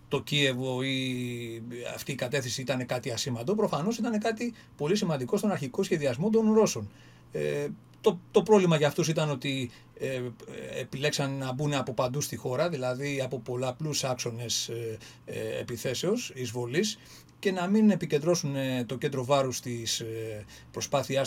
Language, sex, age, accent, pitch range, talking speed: Greek, male, 40-59, Spanish, 125-175 Hz, 145 wpm